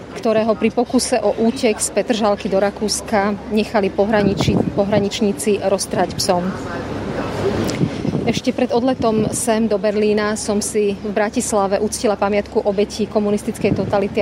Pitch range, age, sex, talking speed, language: 205-225 Hz, 30-49, female, 120 wpm, Slovak